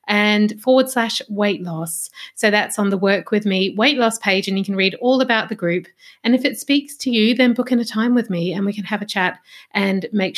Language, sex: English, female